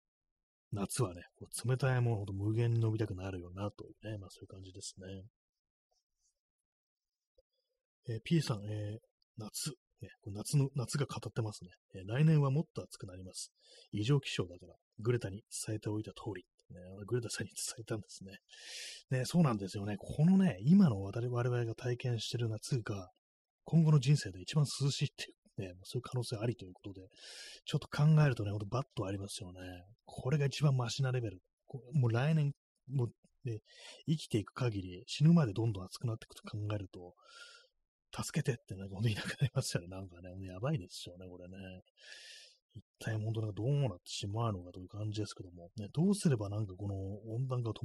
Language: Japanese